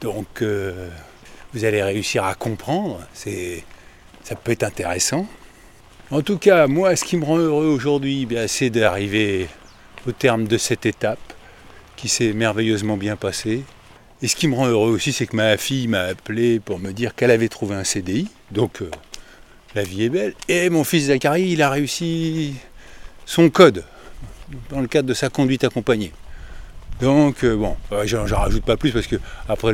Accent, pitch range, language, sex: French, 100-135 Hz, French, male